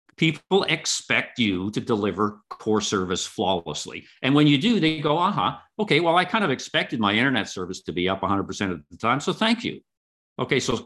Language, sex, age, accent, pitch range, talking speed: English, male, 50-69, American, 105-165 Hz, 205 wpm